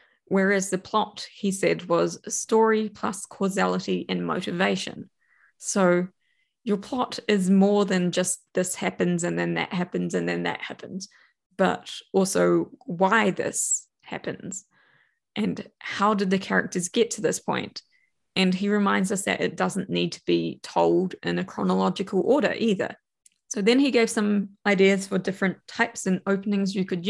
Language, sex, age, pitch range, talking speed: English, female, 20-39, 180-220 Hz, 160 wpm